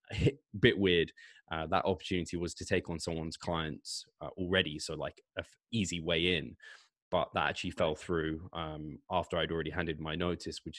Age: 10-29